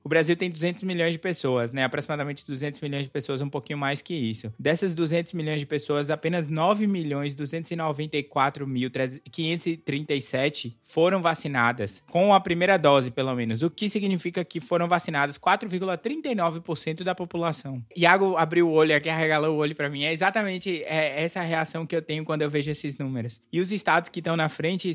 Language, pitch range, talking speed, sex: Portuguese, 140-175 Hz, 170 wpm, male